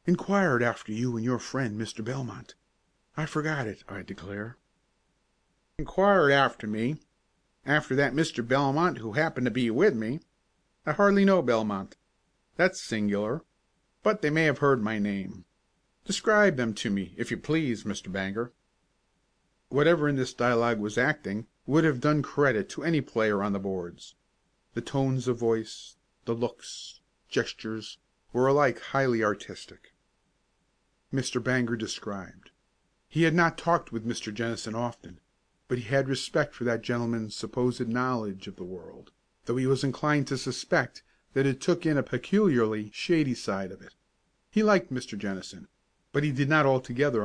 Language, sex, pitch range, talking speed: English, male, 110-145 Hz, 155 wpm